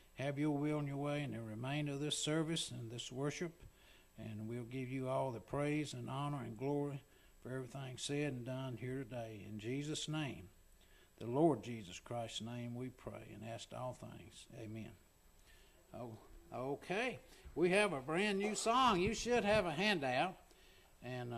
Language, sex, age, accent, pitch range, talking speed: English, male, 60-79, American, 120-175 Hz, 175 wpm